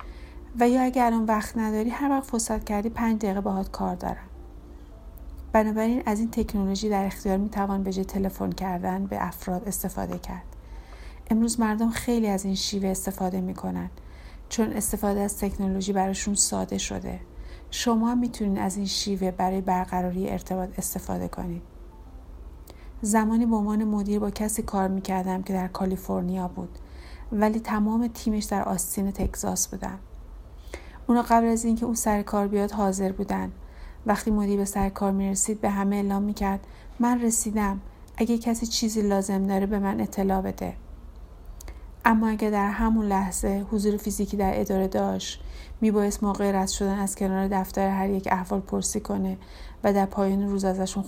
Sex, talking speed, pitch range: female, 150 wpm, 185-215 Hz